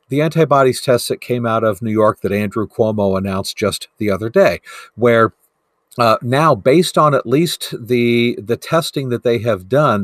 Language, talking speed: English, 185 wpm